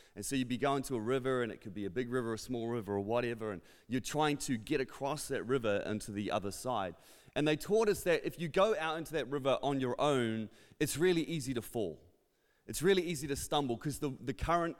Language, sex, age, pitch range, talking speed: English, male, 30-49, 125-160 Hz, 245 wpm